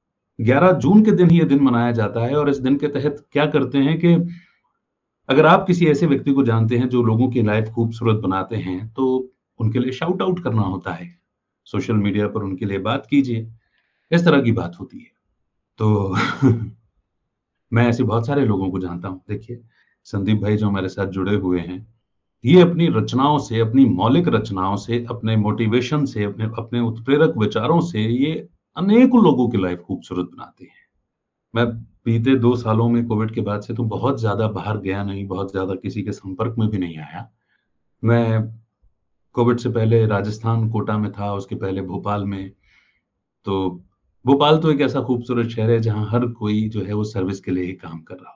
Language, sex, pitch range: Hindi, male, 100-125 Hz